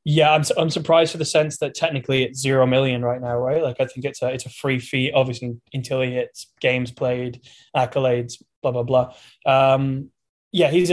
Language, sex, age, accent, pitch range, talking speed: English, male, 10-29, British, 125-135 Hz, 205 wpm